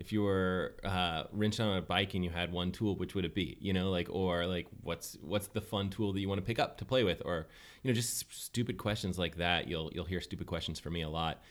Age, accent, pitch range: 30-49, American, 85-110 Hz